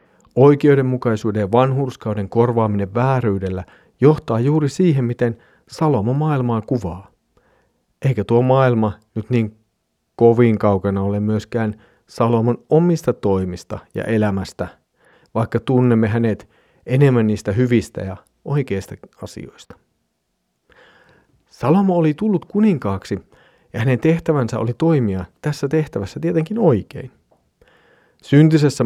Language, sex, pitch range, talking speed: Finnish, male, 105-145 Hz, 100 wpm